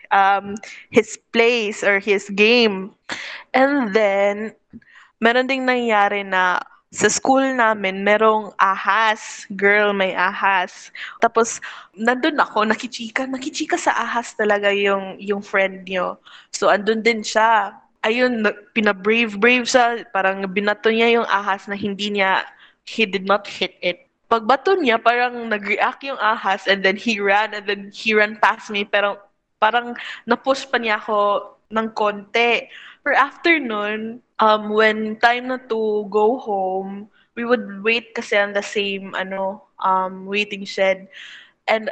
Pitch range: 200-235 Hz